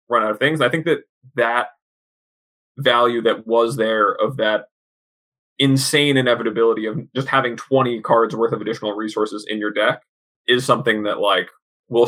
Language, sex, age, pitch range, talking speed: English, male, 20-39, 105-135 Hz, 170 wpm